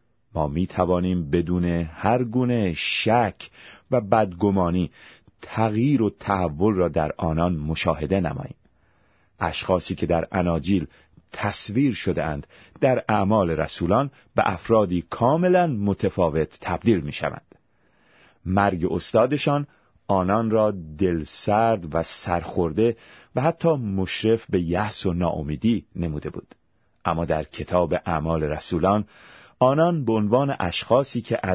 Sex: male